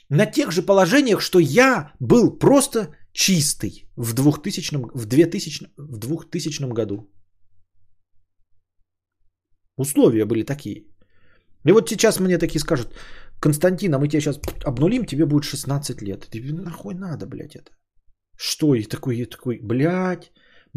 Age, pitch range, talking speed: 30-49, 100-165 Hz, 130 wpm